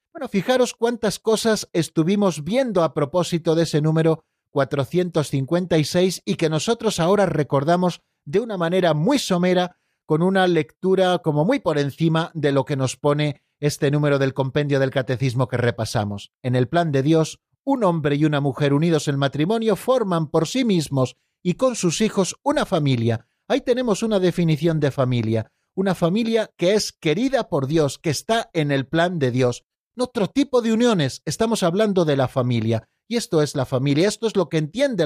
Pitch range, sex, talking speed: 145-195 Hz, male, 180 wpm